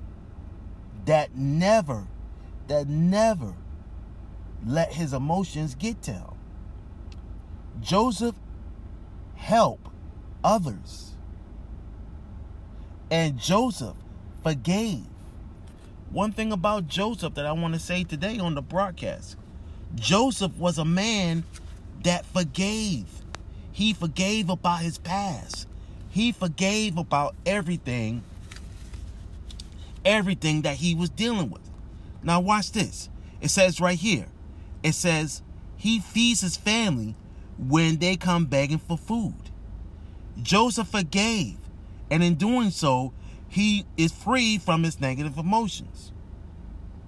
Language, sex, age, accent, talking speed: English, male, 40-59, American, 105 wpm